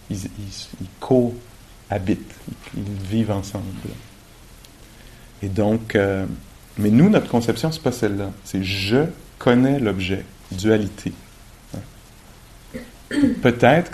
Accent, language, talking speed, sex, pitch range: French, English, 105 wpm, male, 100-120 Hz